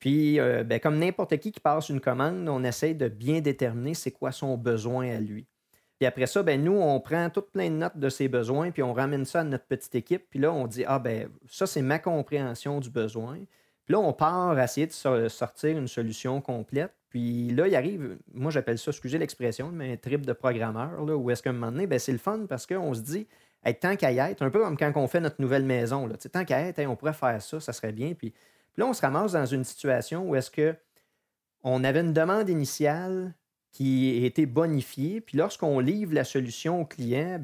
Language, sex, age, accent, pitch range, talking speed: French, male, 30-49, Canadian, 125-170 Hz, 235 wpm